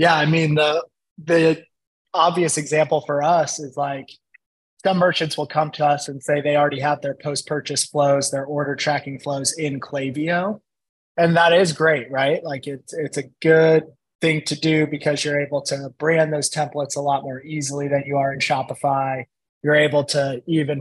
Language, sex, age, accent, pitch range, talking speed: English, male, 20-39, American, 140-160 Hz, 185 wpm